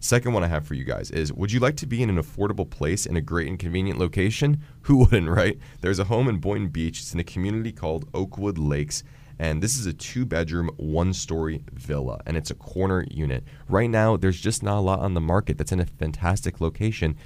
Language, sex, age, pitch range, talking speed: English, male, 20-39, 80-110 Hz, 230 wpm